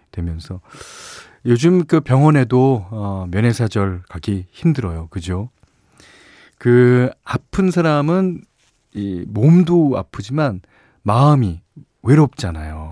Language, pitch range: Korean, 100-145 Hz